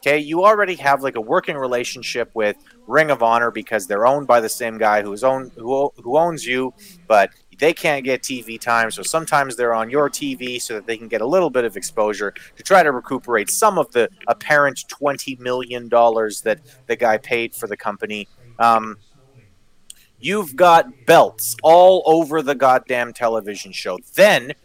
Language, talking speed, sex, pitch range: English, 185 wpm, male, 120-160 Hz